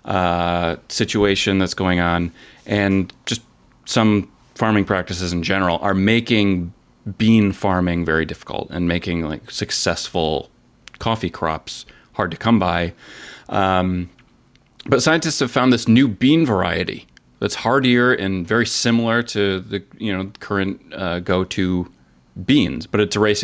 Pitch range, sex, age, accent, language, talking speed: 90-115 Hz, male, 30-49, American, English, 140 wpm